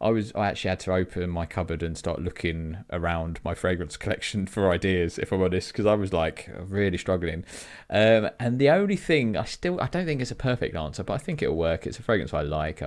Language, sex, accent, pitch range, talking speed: English, male, British, 80-95 Hz, 240 wpm